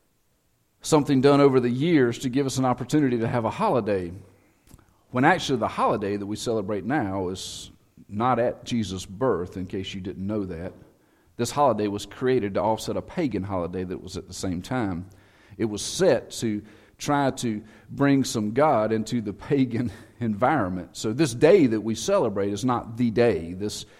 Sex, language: male, English